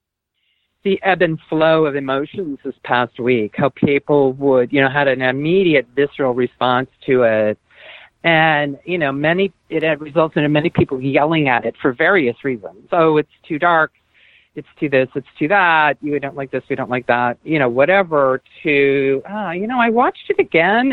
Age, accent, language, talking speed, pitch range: 50-69, American, English, 190 wpm, 130-160 Hz